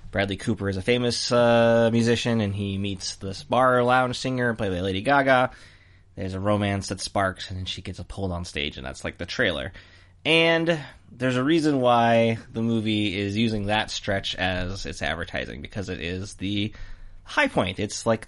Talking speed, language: 185 wpm, English